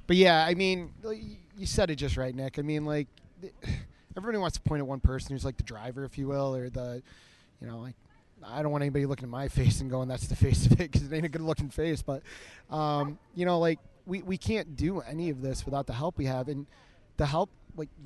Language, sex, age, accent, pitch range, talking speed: English, male, 30-49, American, 130-155 Hz, 245 wpm